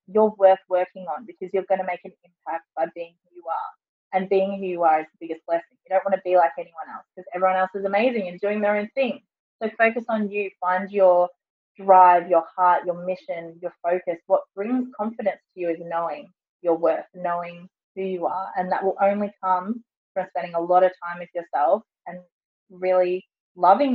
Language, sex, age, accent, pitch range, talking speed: English, female, 20-39, Australian, 175-195 Hz, 215 wpm